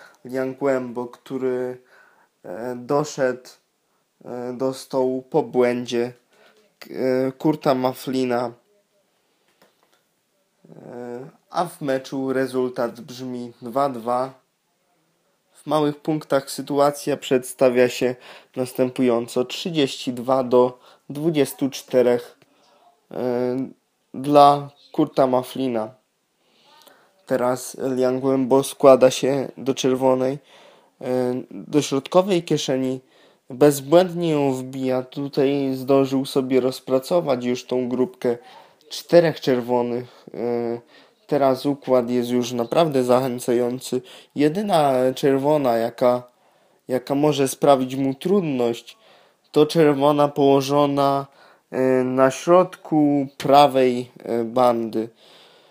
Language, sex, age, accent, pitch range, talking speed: Polish, male, 20-39, native, 125-145 Hz, 75 wpm